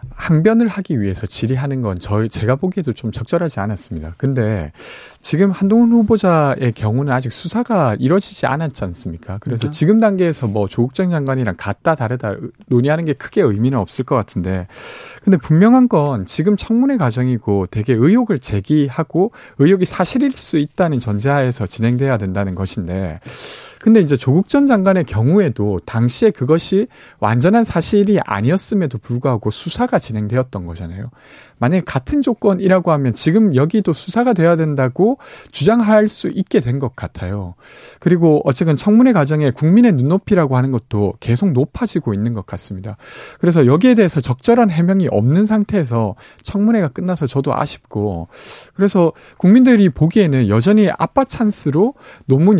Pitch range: 115-195 Hz